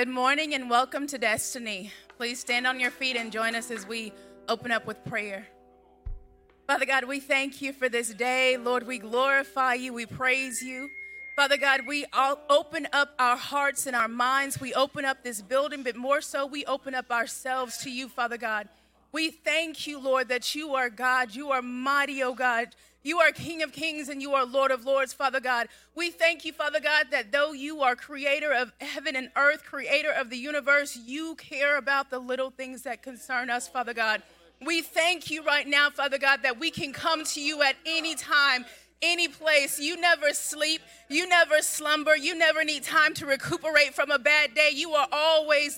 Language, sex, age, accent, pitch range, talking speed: English, female, 30-49, American, 255-300 Hz, 200 wpm